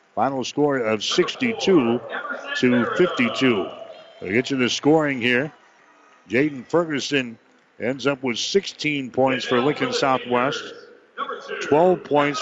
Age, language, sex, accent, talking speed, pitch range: 60-79, English, male, American, 115 wpm, 125-155 Hz